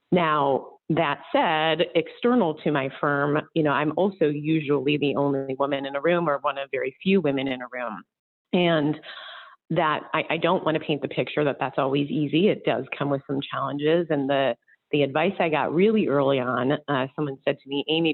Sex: female